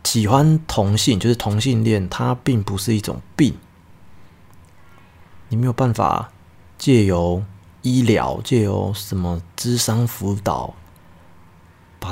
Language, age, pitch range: Chinese, 30-49, 90-110 Hz